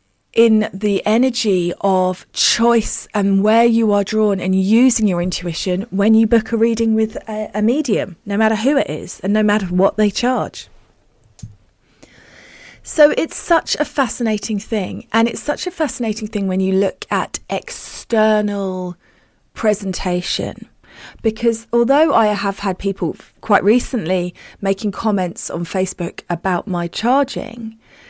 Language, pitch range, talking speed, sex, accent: English, 185-230 Hz, 145 wpm, female, British